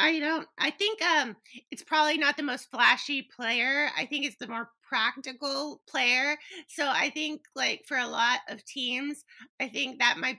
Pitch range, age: 235-285 Hz, 30-49